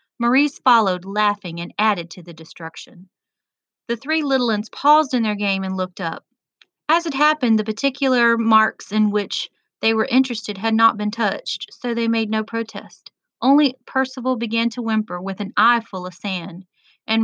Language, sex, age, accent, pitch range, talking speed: English, female, 30-49, American, 195-240 Hz, 180 wpm